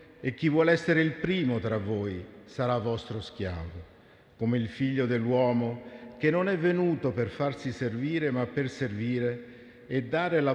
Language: Italian